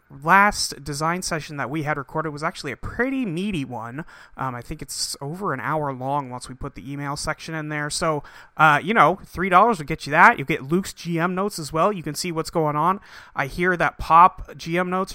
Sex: male